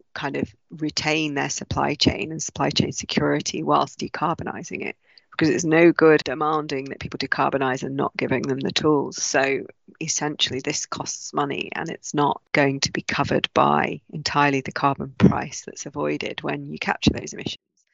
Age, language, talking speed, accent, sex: 30-49, English, 170 wpm, British, female